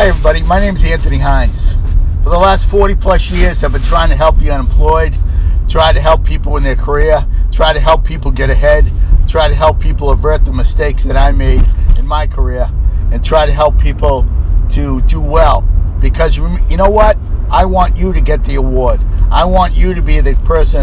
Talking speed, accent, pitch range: 205 wpm, American, 75-90 Hz